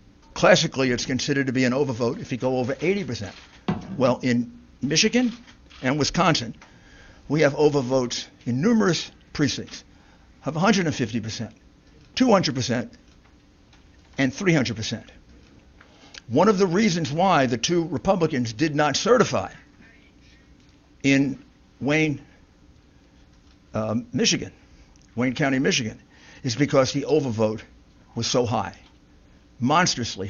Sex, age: male, 60-79